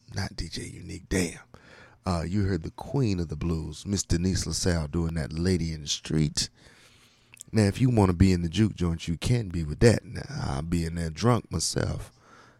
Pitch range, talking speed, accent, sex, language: 85-115 Hz, 200 wpm, American, male, English